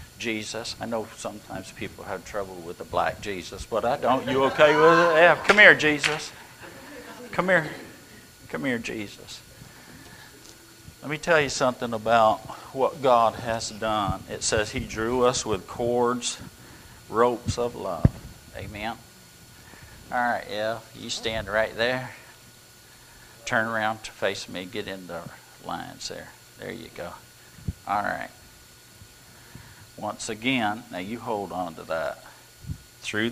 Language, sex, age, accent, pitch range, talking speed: English, male, 50-69, American, 105-120 Hz, 140 wpm